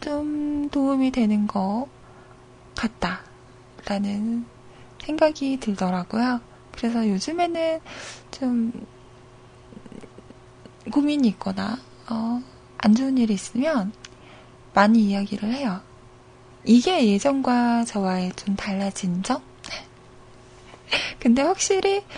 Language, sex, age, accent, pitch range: Korean, female, 20-39, native, 200-290 Hz